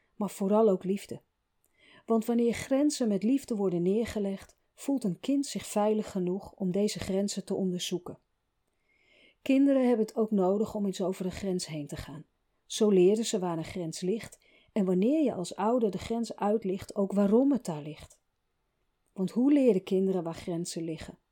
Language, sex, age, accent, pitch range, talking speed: Dutch, female, 40-59, Dutch, 180-225 Hz, 175 wpm